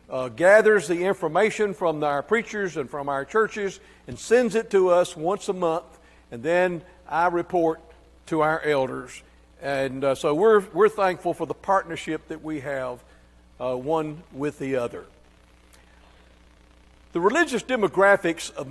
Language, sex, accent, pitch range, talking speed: English, male, American, 140-210 Hz, 150 wpm